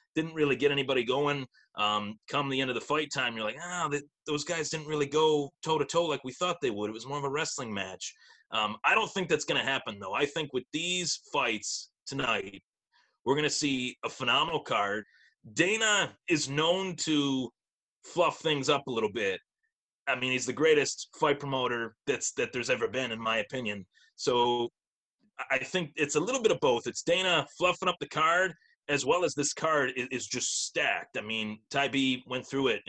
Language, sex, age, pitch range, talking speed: English, male, 30-49, 125-160 Hz, 205 wpm